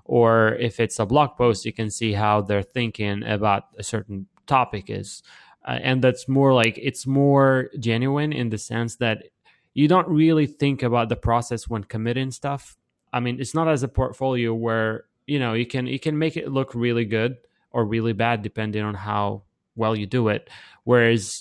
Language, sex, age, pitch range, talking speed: English, male, 20-39, 105-125 Hz, 195 wpm